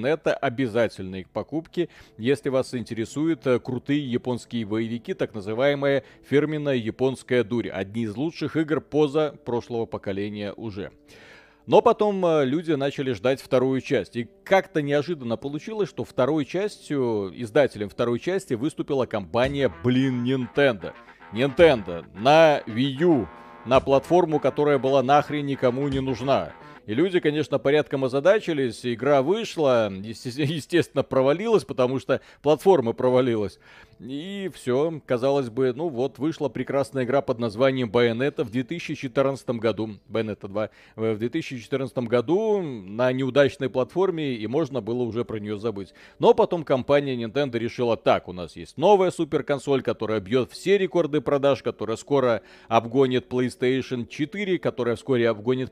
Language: Russian